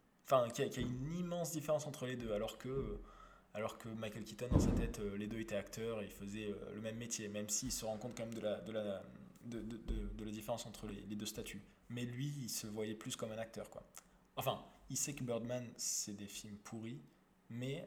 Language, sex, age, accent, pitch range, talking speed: French, male, 20-39, French, 110-135 Hz, 250 wpm